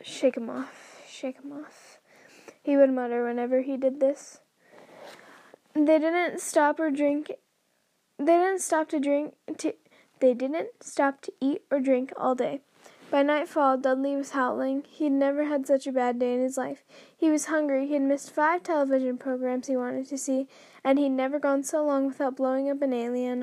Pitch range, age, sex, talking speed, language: 260-295 Hz, 10-29, female, 185 wpm, English